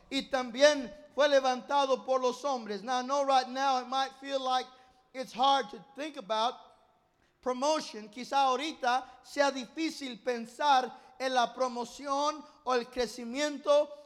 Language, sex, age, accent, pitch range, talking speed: English, male, 50-69, American, 255-290 Hz, 145 wpm